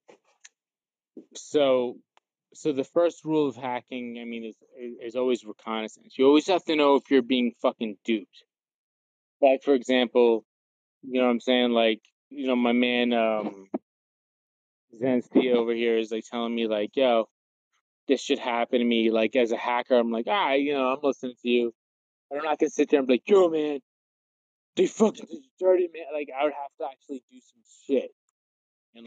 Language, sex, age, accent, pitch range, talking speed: English, male, 20-39, American, 115-130 Hz, 190 wpm